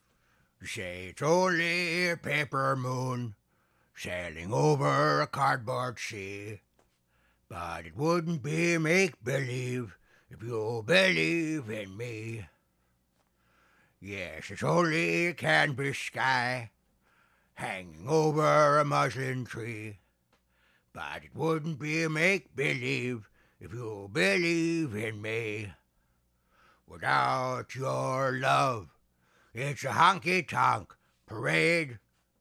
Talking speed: 95 wpm